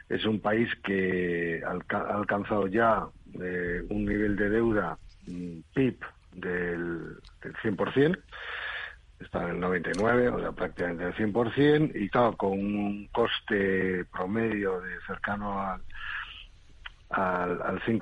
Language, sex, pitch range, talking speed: Spanish, male, 90-115 Hz, 125 wpm